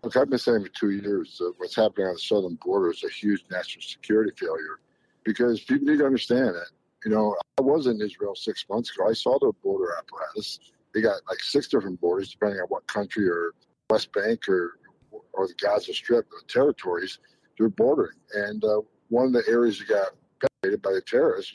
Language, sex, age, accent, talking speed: English, male, 60-79, American, 210 wpm